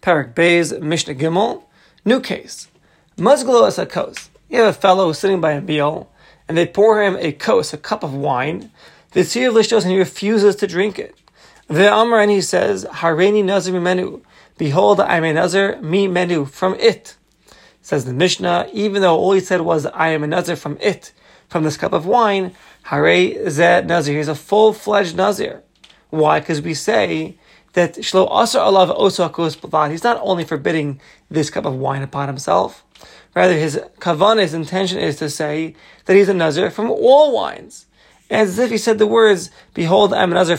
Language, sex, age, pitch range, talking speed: English, male, 30-49, 160-200 Hz, 175 wpm